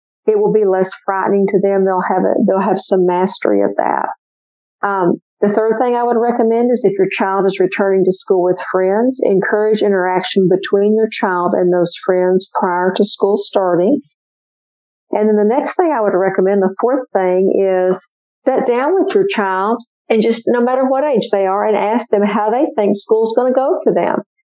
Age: 50-69